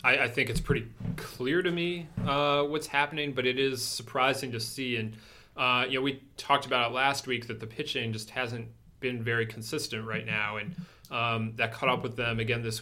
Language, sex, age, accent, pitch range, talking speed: English, male, 30-49, American, 115-140 Hz, 215 wpm